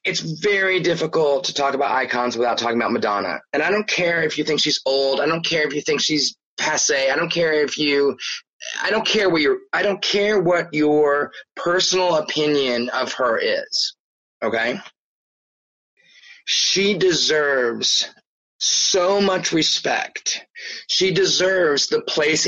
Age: 30-49